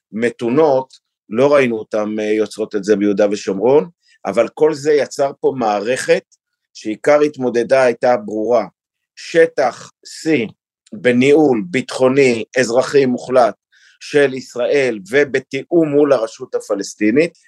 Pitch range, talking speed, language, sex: 120-170 Hz, 105 wpm, Hebrew, male